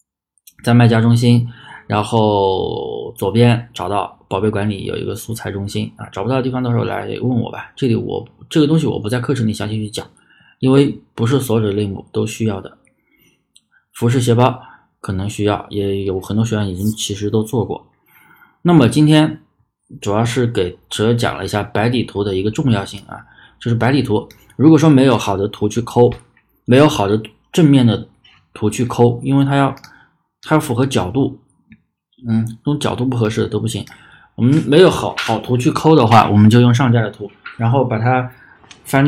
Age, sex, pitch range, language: 20-39, male, 105-125 Hz, Chinese